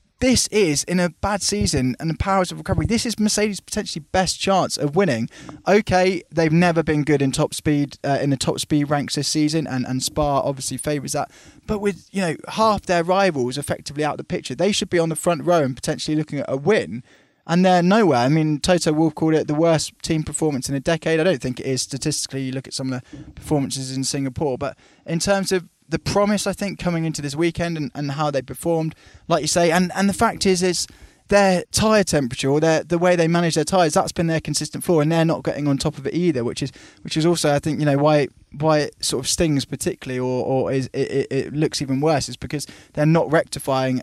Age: 10-29